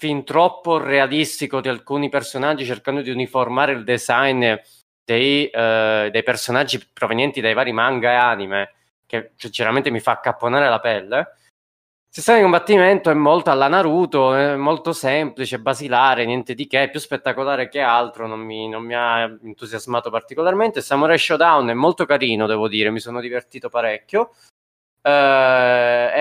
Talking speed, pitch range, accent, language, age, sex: 155 wpm, 115-140 Hz, native, Italian, 20-39, male